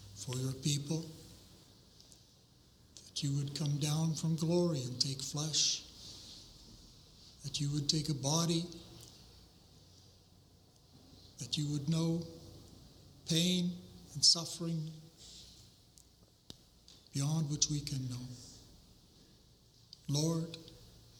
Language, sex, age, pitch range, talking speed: English, male, 60-79, 105-160 Hz, 90 wpm